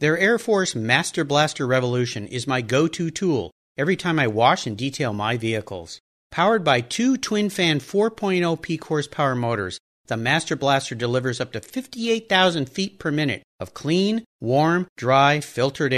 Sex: male